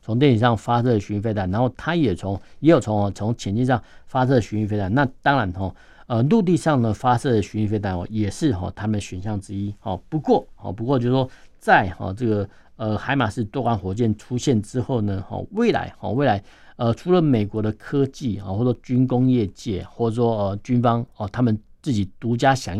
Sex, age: male, 50-69